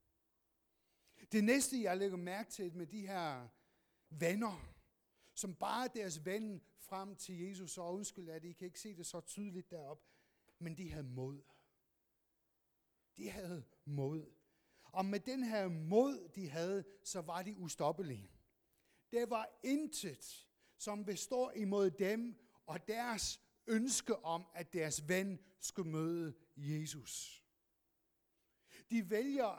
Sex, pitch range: male, 155-210 Hz